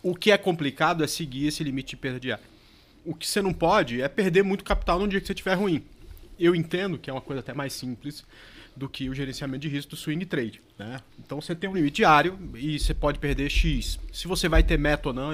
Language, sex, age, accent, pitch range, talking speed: Portuguese, male, 30-49, Brazilian, 130-175 Hz, 245 wpm